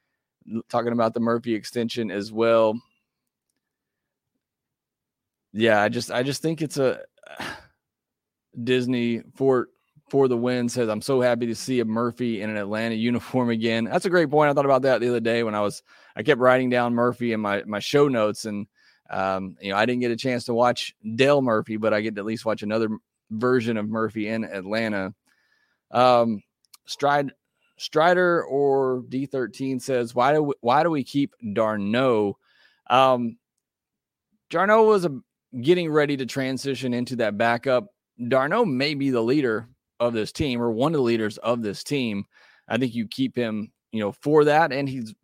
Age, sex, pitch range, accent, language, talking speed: 20-39, male, 110-130 Hz, American, English, 180 wpm